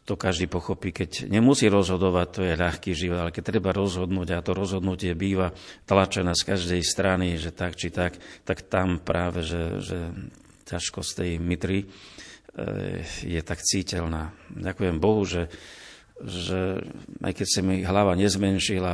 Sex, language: male, Slovak